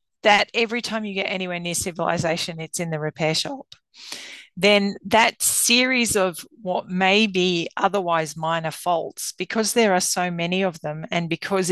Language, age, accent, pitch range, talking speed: English, 40-59, Australian, 160-195 Hz, 165 wpm